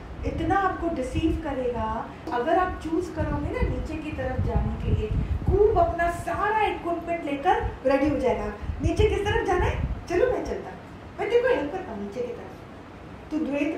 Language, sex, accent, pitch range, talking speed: Hindi, female, native, 250-335 Hz, 170 wpm